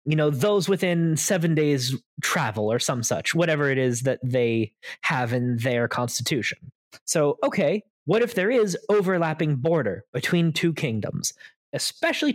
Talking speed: 150 wpm